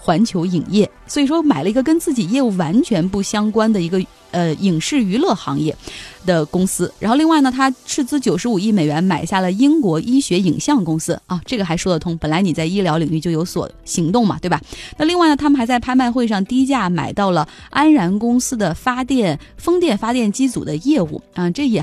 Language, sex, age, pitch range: Chinese, female, 20-39, 175-245 Hz